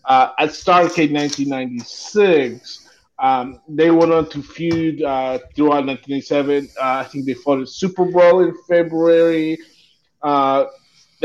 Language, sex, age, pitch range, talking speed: English, male, 30-49, 130-160 Hz, 145 wpm